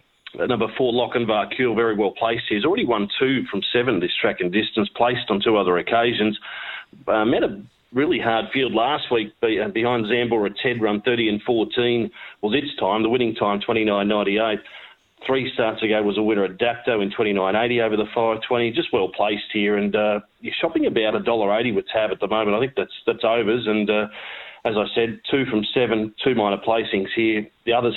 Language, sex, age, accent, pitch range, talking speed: English, male, 40-59, Australian, 105-120 Hz, 220 wpm